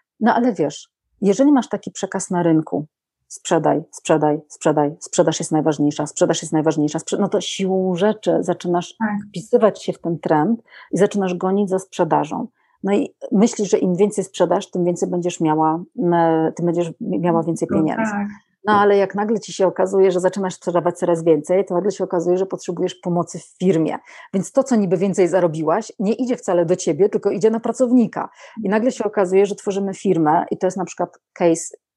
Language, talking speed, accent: Polish, 185 wpm, native